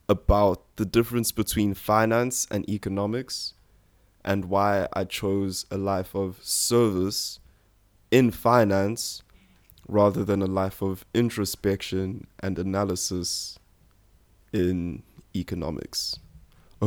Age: 20-39